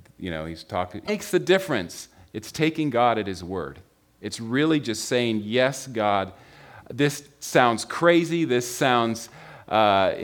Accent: American